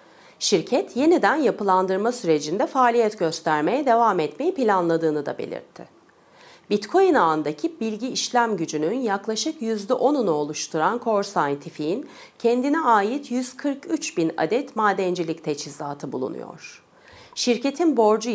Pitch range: 165-270 Hz